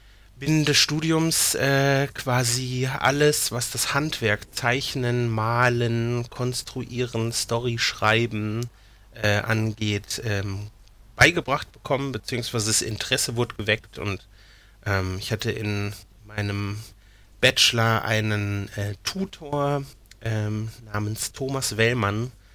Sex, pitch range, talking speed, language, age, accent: male, 105-125 Hz, 100 wpm, German, 30-49, German